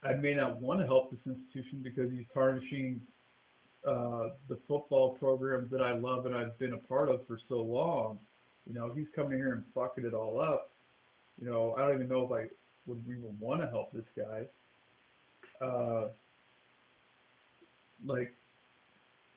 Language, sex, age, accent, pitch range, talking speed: English, male, 50-69, American, 125-145 Hz, 165 wpm